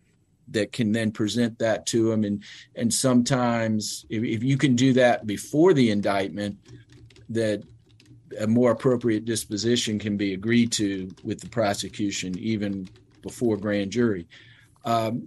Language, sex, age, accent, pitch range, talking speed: English, male, 50-69, American, 105-120 Hz, 140 wpm